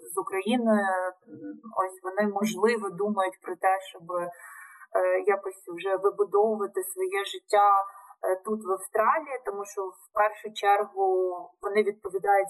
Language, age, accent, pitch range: Ukrainian, 20-39, native, 195-260 Hz